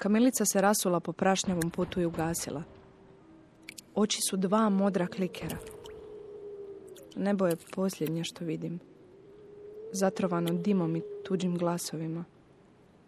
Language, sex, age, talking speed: Croatian, female, 30-49, 105 wpm